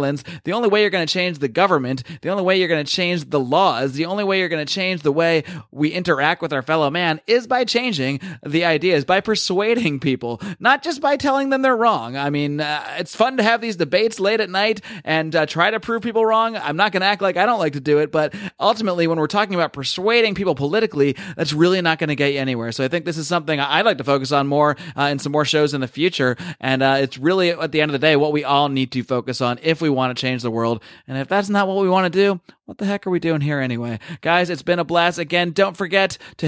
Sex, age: male, 30-49